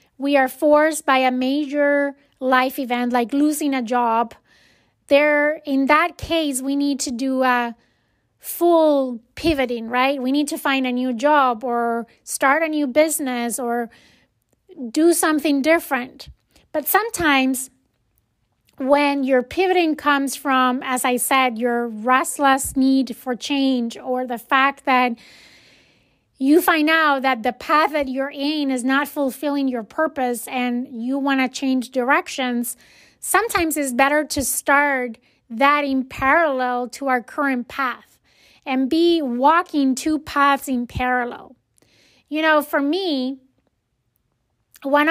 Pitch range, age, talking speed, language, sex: 250-295 Hz, 30-49, 135 wpm, English, female